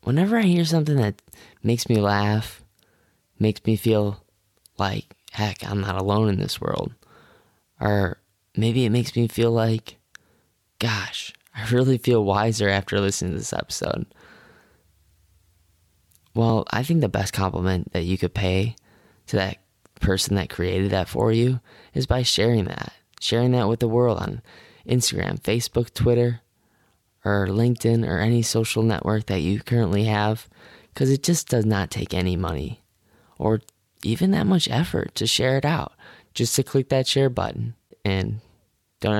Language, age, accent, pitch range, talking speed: English, 10-29, American, 95-120 Hz, 155 wpm